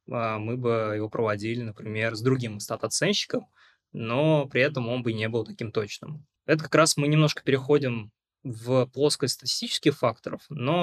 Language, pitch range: Russian, 115-145 Hz